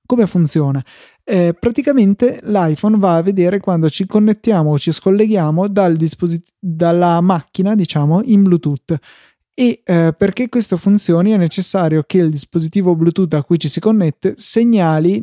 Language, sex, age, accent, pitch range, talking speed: Italian, male, 20-39, native, 155-190 Hz, 140 wpm